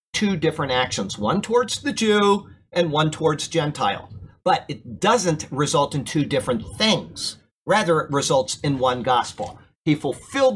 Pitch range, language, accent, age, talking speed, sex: 130-180 Hz, English, American, 50-69, 155 wpm, male